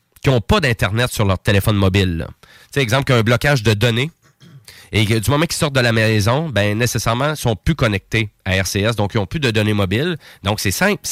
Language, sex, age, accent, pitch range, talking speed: French, male, 30-49, Canadian, 105-140 Hz, 245 wpm